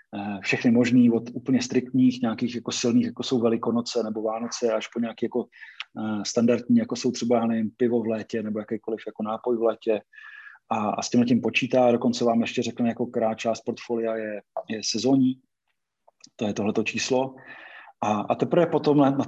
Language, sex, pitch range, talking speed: Slovak, male, 110-130 Hz, 170 wpm